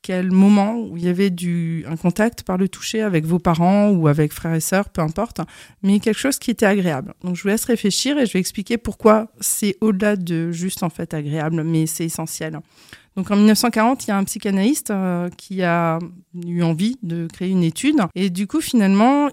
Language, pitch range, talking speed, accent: French, 175-210 Hz, 210 wpm, French